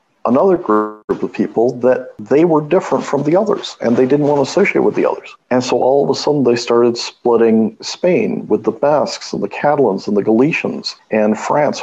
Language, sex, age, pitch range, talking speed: English, male, 50-69, 110-130 Hz, 210 wpm